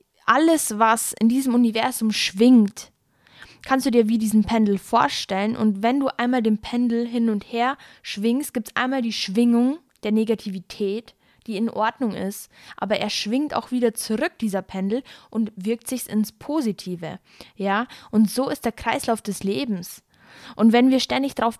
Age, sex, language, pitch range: 10-29, female, German, 205-240 Hz